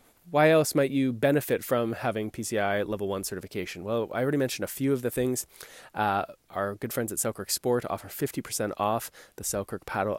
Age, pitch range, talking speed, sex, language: 20-39, 100-130 Hz, 195 wpm, male, English